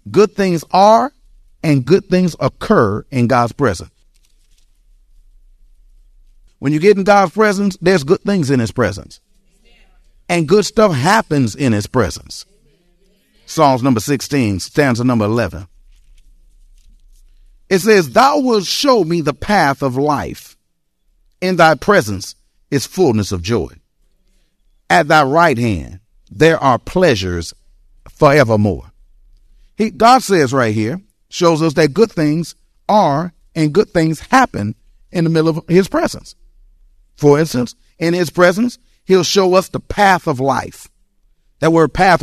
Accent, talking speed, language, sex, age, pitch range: American, 135 wpm, English, male, 50-69, 110-175 Hz